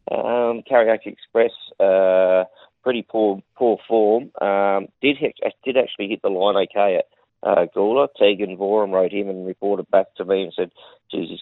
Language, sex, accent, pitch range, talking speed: English, male, Australian, 95-120 Hz, 180 wpm